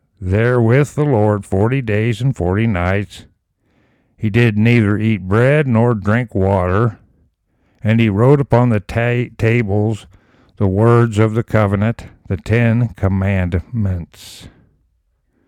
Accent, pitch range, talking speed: American, 100-120 Hz, 120 wpm